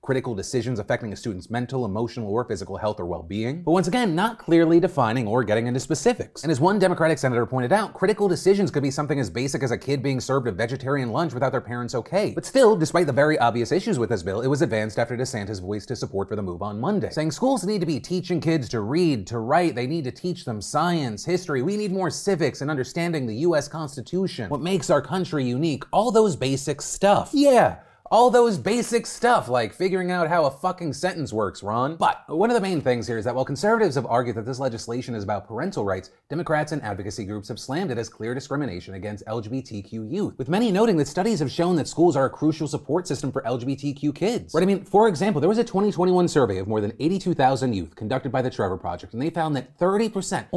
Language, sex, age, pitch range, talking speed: English, male, 30-49, 120-180 Hz, 235 wpm